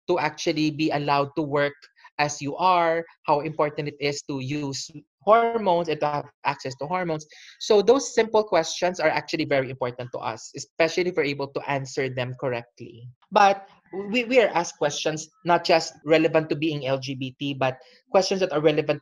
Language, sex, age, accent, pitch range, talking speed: English, male, 20-39, Filipino, 145-180 Hz, 180 wpm